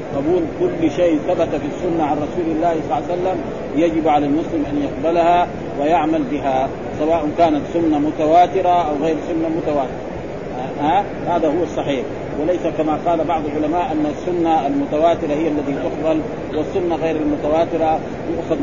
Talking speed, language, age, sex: 150 wpm, Arabic, 40-59, male